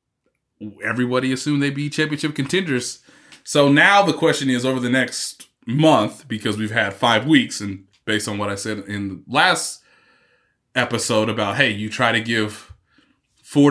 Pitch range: 110-150 Hz